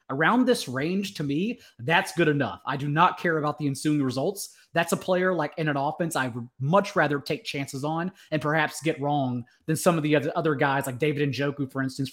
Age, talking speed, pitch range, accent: 30-49, 225 wpm, 140-175 Hz, American